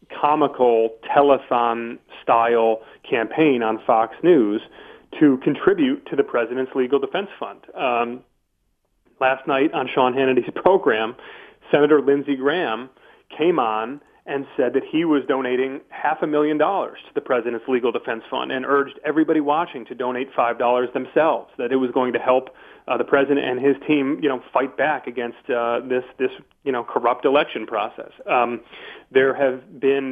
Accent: American